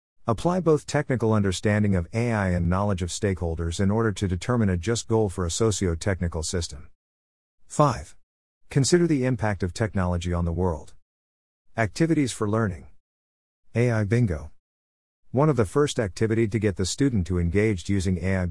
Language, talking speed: English, 155 wpm